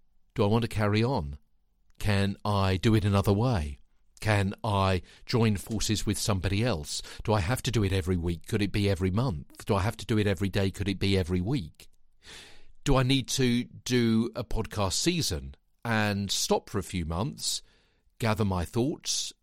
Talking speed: 190 wpm